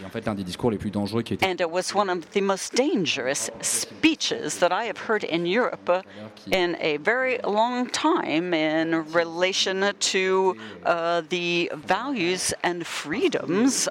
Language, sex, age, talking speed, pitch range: French, female, 60-79, 120 wpm, 155-200 Hz